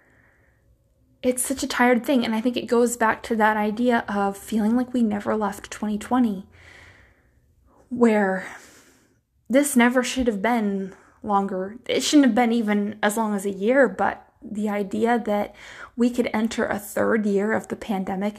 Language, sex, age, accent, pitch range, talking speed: English, female, 20-39, American, 205-245 Hz, 165 wpm